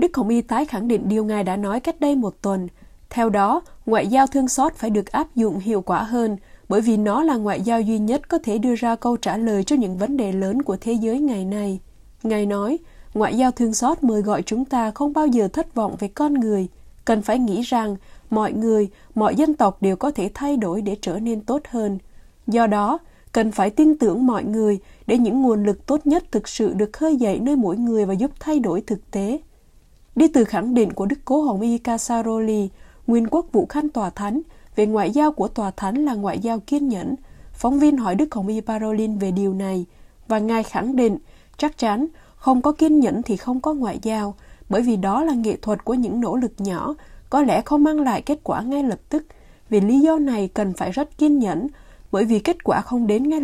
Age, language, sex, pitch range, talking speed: 20-39, Vietnamese, female, 205-275 Hz, 230 wpm